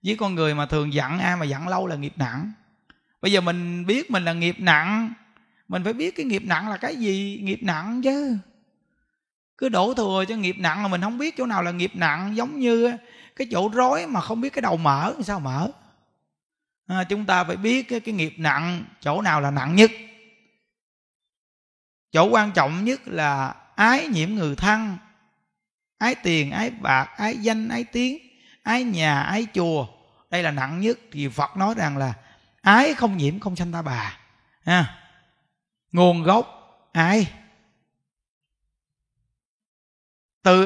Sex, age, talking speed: male, 20-39, 170 wpm